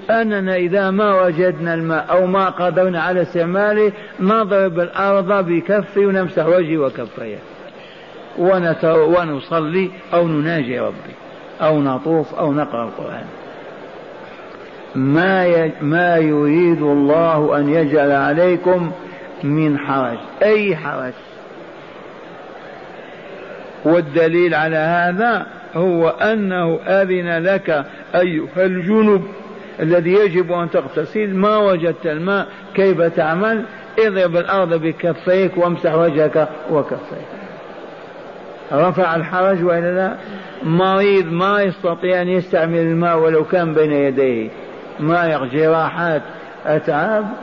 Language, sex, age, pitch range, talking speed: Arabic, male, 50-69, 155-190 Hz, 95 wpm